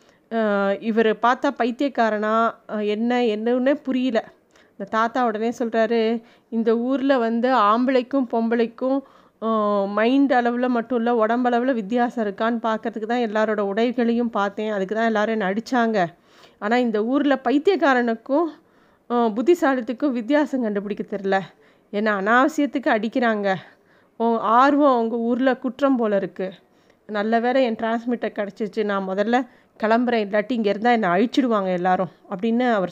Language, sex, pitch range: Tamil, female, 215-255 Hz